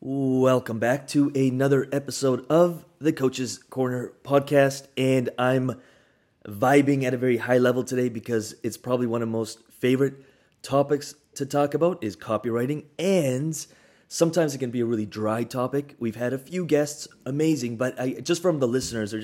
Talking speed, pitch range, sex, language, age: 170 wpm, 110-135 Hz, male, English, 20-39